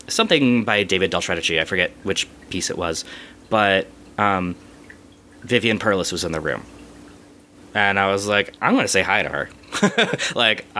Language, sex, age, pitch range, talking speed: English, male, 20-39, 95-135 Hz, 160 wpm